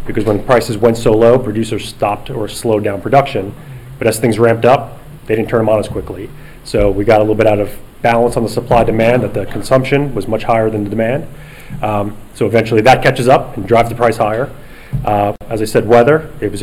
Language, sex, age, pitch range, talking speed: English, male, 30-49, 105-120 Hz, 225 wpm